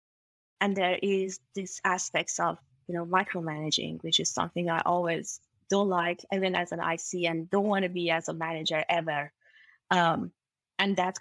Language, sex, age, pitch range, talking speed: English, female, 20-39, 170-220 Hz, 170 wpm